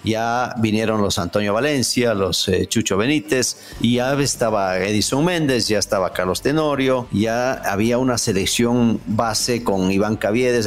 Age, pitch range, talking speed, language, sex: 50-69, 105-135 Hz, 140 wpm, English, male